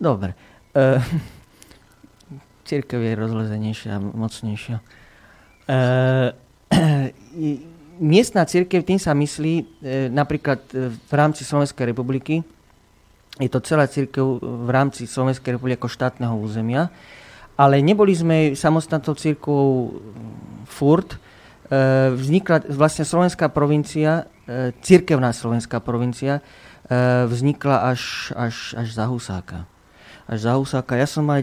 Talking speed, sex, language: 95 wpm, male, Slovak